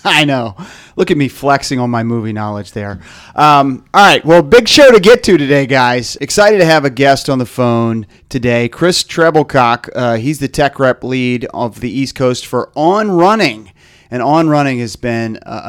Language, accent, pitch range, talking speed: English, American, 110-140 Hz, 200 wpm